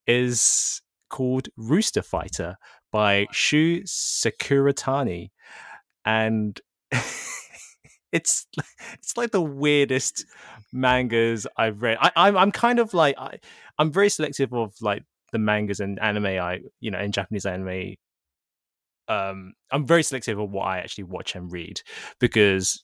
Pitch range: 100-140 Hz